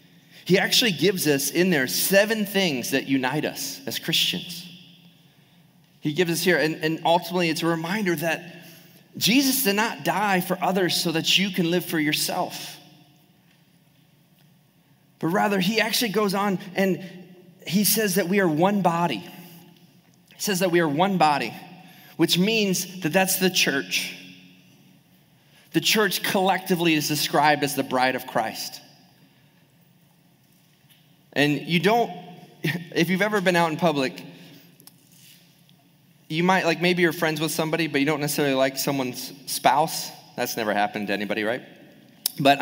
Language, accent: English, American